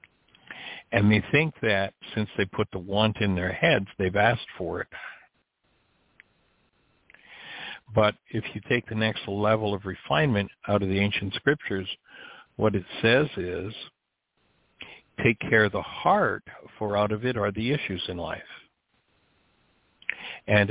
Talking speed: 140 wpm